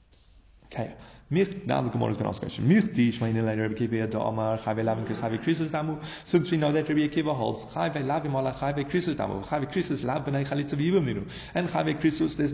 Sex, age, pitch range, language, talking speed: male, 30-49, 120-155 Hz, English, 100 wpm